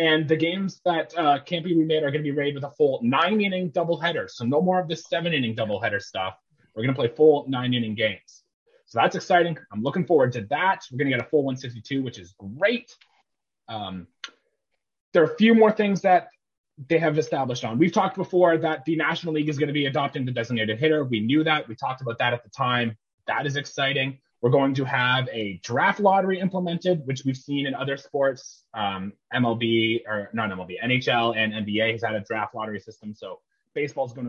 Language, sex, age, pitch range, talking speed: English, male, 30-49, 115-170 Hz, 215 wpm